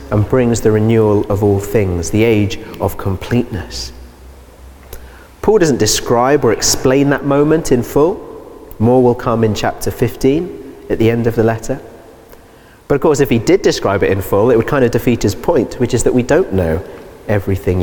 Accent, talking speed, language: British, 190 wpm, English